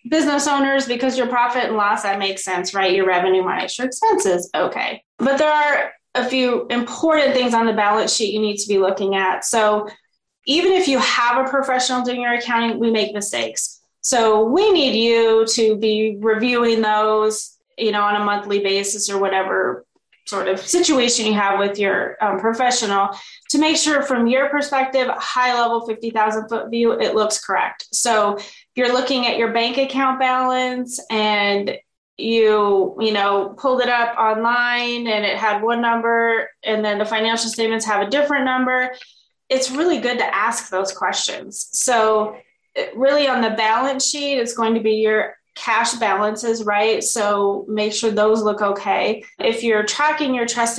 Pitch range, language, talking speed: 210-255 Hz, English, 175 wpm